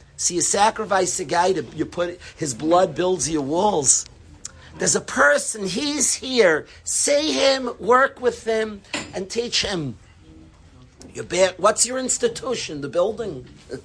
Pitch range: 165-230 Hz